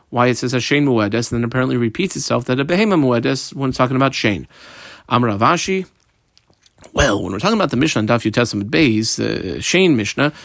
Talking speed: 190 wpm